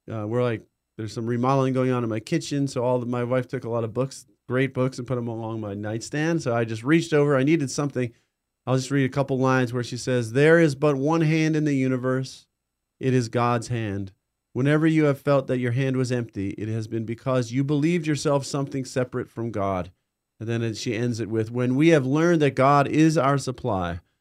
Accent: American